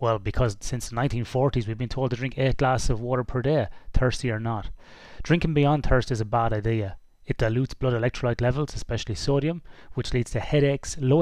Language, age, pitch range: English, 30-49, 110-140 Hz